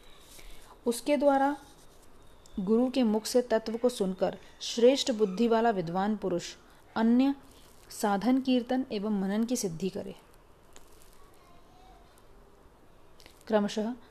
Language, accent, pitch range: Hindi, native, 195-235 Hz